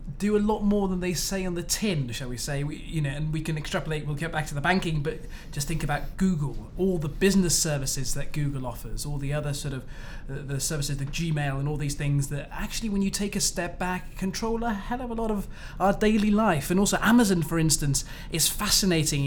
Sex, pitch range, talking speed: male, 140-180 Hz, 240 wpm